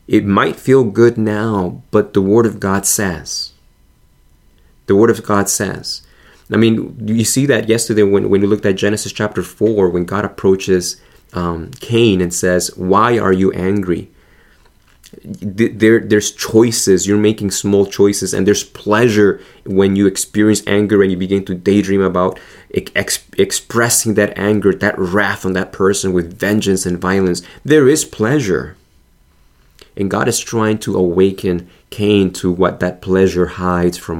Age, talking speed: 20-39, 155 wpm